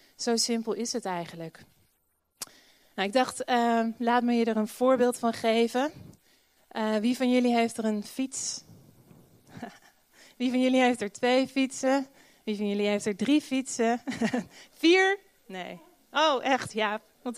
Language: Dutch